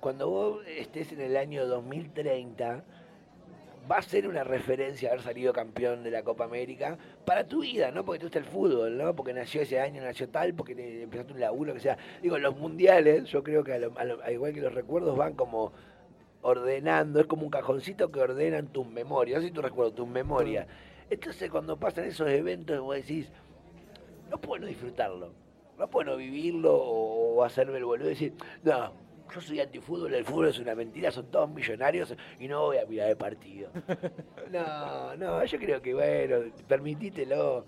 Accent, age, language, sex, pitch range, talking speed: Argentinian, 30-49, Spanish, male, 125-180 Hz, 185 wpm